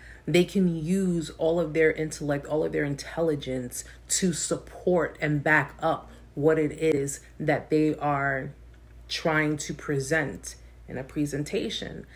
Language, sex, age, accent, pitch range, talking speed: English, female, 30-49, American, 140-175 Hz, 140 wpm